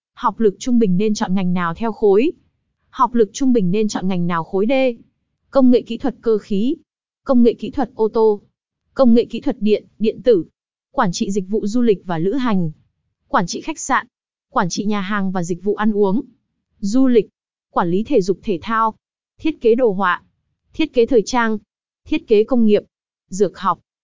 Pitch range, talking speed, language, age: 200-250 Hz, 205 wpm, Vietnamese, 20-39